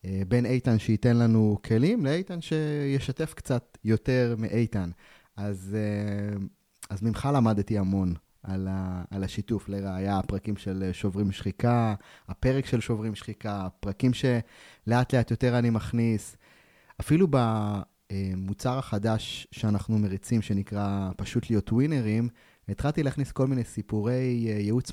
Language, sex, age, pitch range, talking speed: Hebrew, male, 20-39, 105-145 Hz, 120 wpm